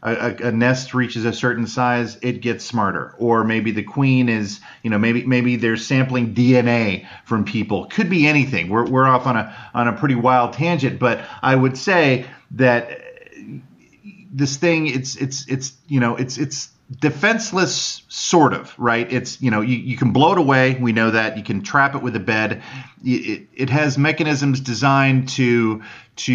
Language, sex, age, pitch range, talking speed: English, male, 40-59, 110-135 Hz, 185 wpm